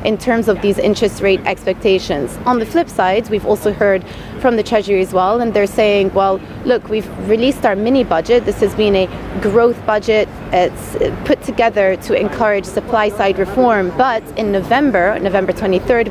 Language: English